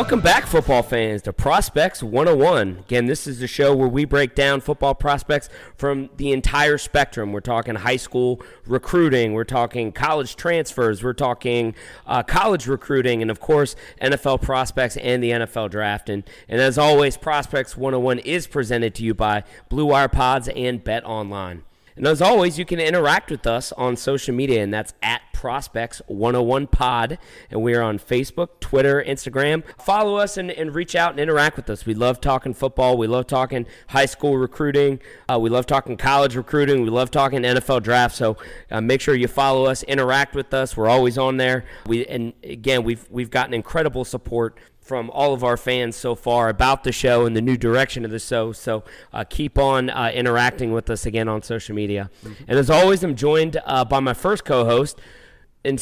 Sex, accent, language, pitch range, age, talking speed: male, American, English, 115-140 Hz, 30-49, 190 wpm